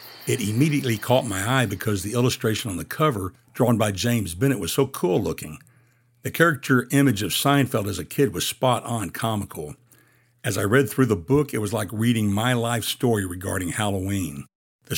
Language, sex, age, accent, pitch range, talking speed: English, male, 60-79, American, 105-125 Hz, 180 wpm